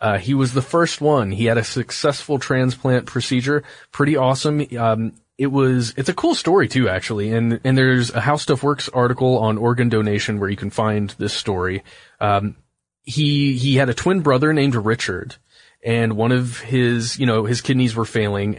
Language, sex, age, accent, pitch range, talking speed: English, male, 30-49, American, 110-135 Hz, 190 wpm